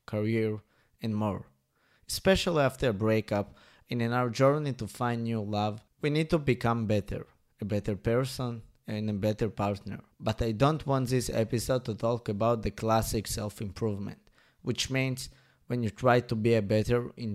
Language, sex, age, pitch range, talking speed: English, male, 20-39, 105-130 Hz, 170 wpm